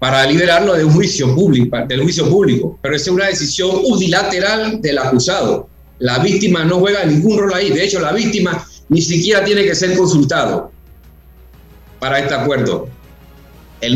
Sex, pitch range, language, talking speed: male, 140-195 Hz, Spanish, 160 wpm